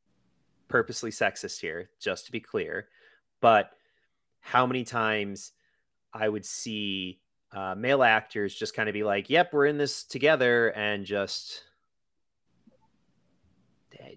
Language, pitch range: English, 100-135 Hz